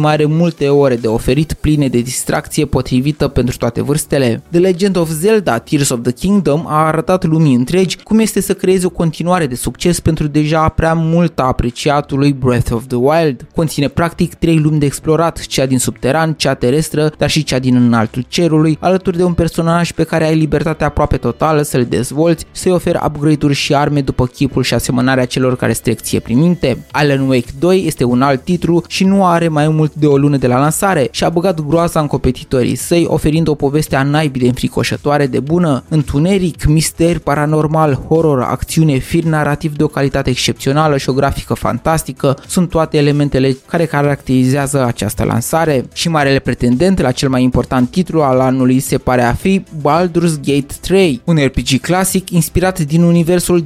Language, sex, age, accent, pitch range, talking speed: Romanian, male, 20-39, native, 130-165 Hz, 180 wpm